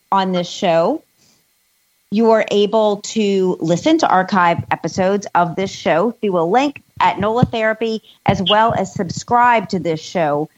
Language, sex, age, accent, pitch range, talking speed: English, female, 40-59, American, 180-225 Hz, 155 wpm